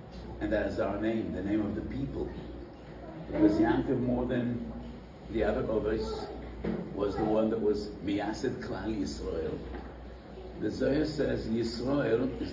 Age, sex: 60-79, male